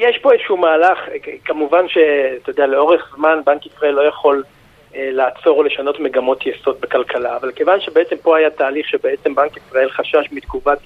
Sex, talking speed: male, 170 wpm